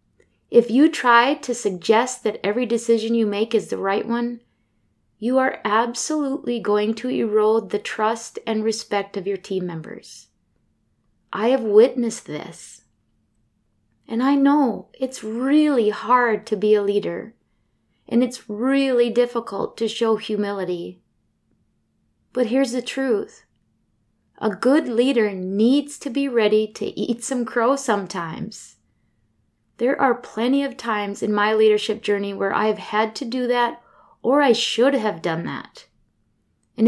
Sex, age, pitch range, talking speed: female, 20-39, 205-250 Hz, 140 wpm